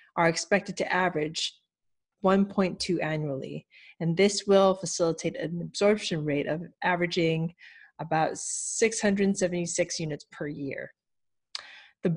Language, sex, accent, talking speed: English, female, American, 105 wpm